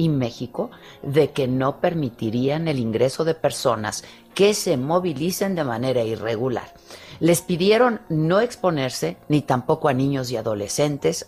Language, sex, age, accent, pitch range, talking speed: Spanish, female, 50-69, Mexican, 130-180 Hz, 140 wpm